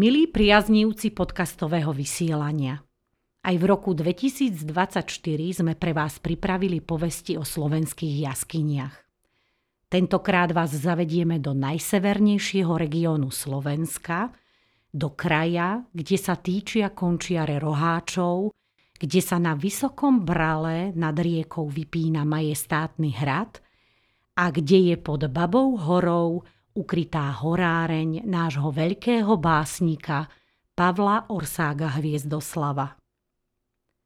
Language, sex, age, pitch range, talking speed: Slovak, female, 40-59, 150-185 Hz, 95 wpm